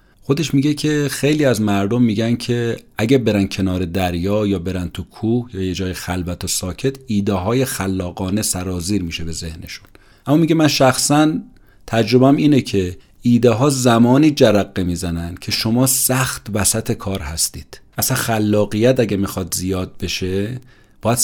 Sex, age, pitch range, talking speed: male, 40-59, 95-125 Hz, 155 wpm